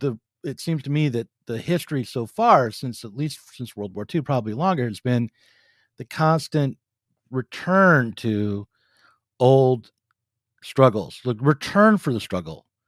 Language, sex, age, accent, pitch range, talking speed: English, male, 50-69, American, 100-145 Hz, 145 wpm